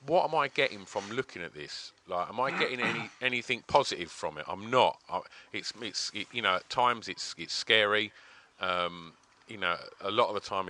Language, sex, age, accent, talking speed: English, male, 40-59, British, 215 wpm